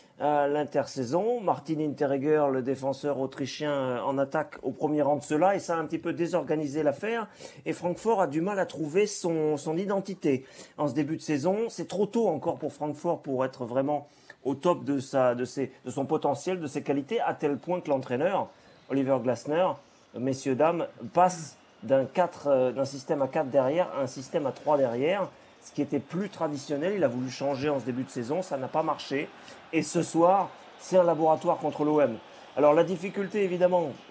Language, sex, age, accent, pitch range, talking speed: French, male, 40-59, French, 140-170 Hz, 190 wpm